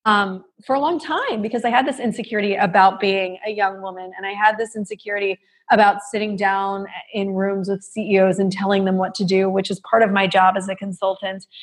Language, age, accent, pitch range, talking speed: English, 20-39, American, 195-230 Hz, 215 wpm